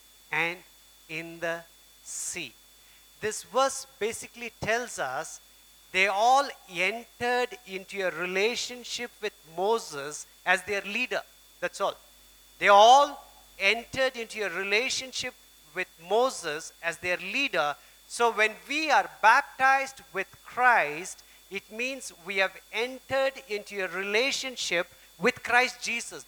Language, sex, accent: Japanese, male, Indian